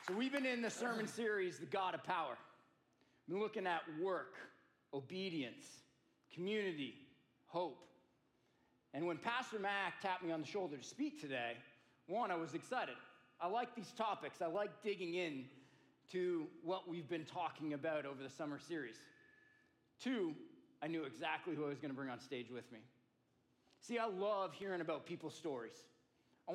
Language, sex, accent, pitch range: English, male, American, 150-200 Hz